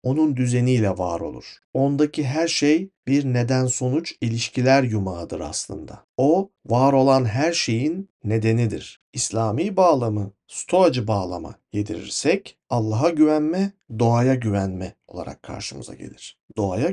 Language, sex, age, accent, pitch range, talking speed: Turkish, male, 50-69, native, 110-150 Hz, 110 wpm